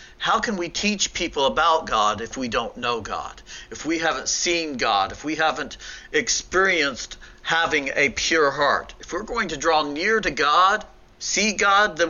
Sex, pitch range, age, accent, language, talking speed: male, 160-215 Hz, 50-69, American, English, 180 wpm